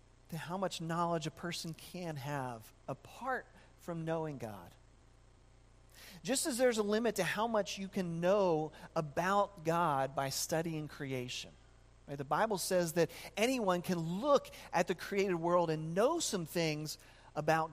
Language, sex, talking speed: English, male, 150 wpm